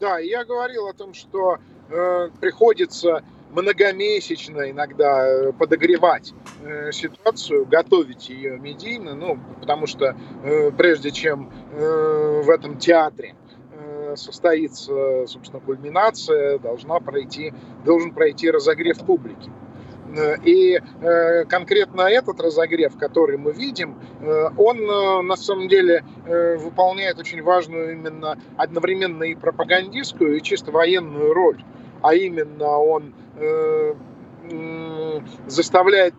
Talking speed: 105 wpm